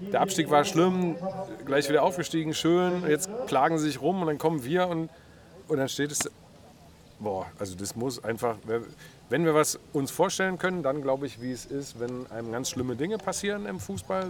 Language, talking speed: German, 195 wpm